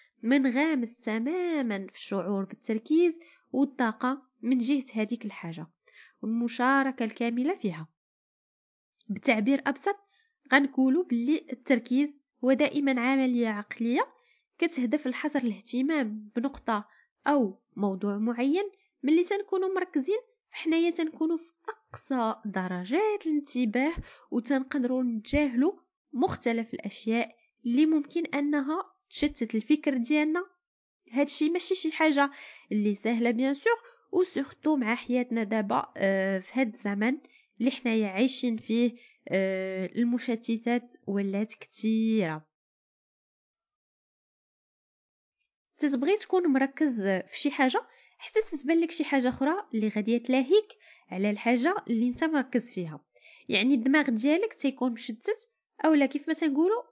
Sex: female